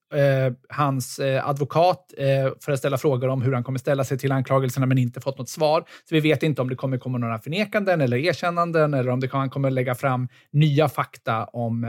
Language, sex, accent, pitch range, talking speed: Swedish, male, native, 125-155 Hz, 205 wpm